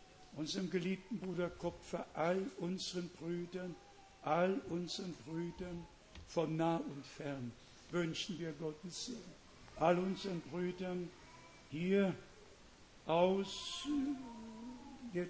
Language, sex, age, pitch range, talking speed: Hungarian, male, 60-79, 155-190 Hz, 95 wpm